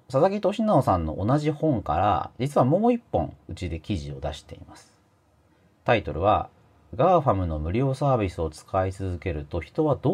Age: 40-59